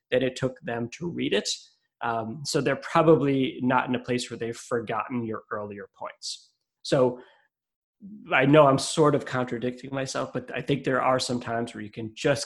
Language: English